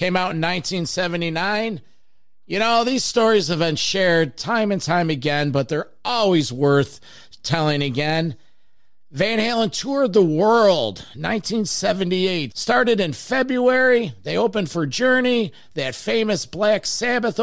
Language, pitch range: English, 150-205 Hz